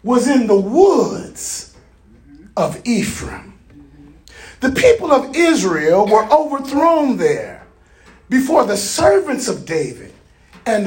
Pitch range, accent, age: 210-320 Hz, American, 40-59